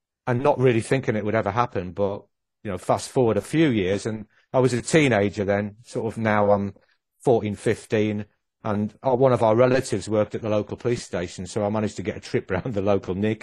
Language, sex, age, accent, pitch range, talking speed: English, male, 40-59, British, 100-120 Hz, 225 wpm